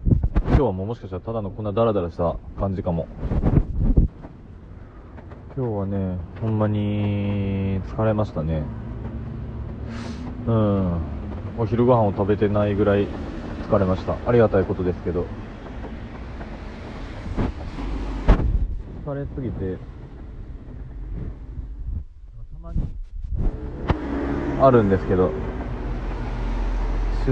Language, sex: Japanese, male